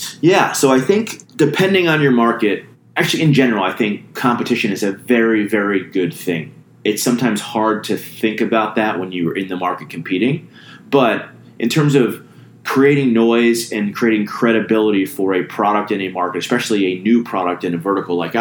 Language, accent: English, American